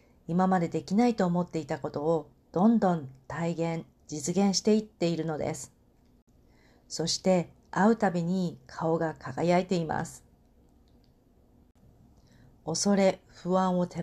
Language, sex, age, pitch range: Japanese, female, 40-59, 155-195 Hz